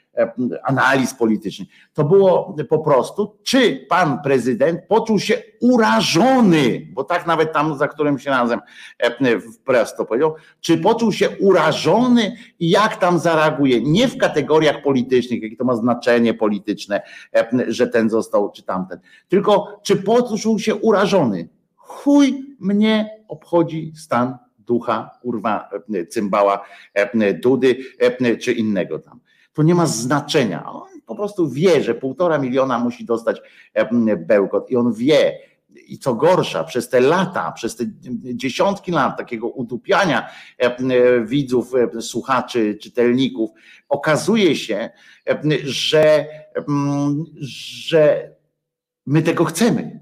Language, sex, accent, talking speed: Polish, male, native, 125 wpm